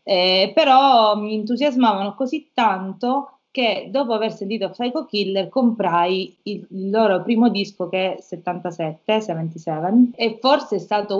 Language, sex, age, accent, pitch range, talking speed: Italian, female, 30-49, native, 185-230 Hz, 140 wpm